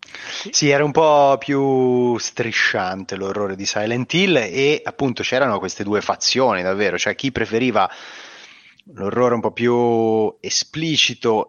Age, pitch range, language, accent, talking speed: 30-49, 110-130 Hz, Italian, native, 130 wpm